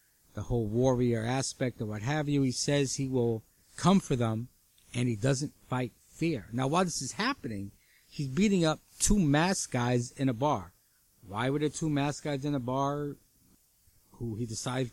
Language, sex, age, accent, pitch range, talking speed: English, male, 50-69, American, 110-145 Hz, 185 wpm